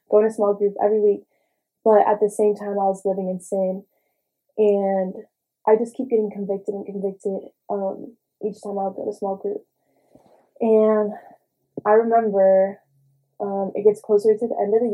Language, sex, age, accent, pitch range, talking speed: English, female, 10-29, American, 195-225 Hz, 185 wpm